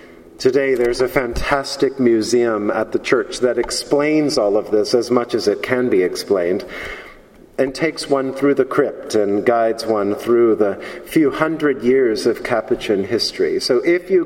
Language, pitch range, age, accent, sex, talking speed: English, 130-155 Hz, 40-59, American, male, 170 wpm